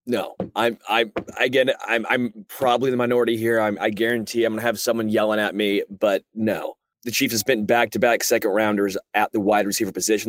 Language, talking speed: English, 200 wpm